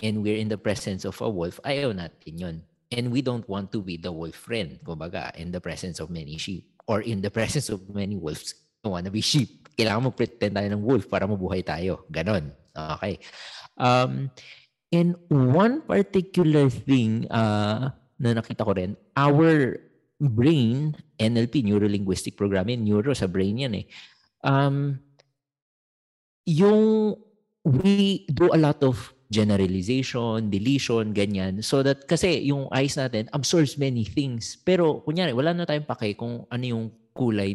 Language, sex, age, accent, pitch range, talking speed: English, male, 50-69, Filipino, 95-140 Hz, 155 wpm